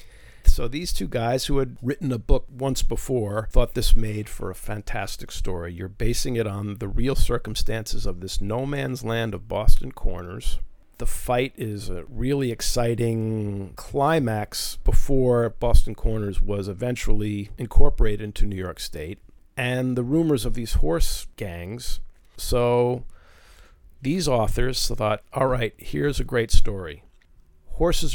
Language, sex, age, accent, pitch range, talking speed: English, male, 50-69, American, 100-120 Hz, 145 wpm